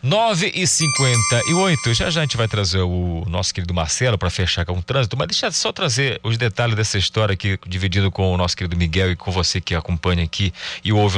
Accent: Brazilian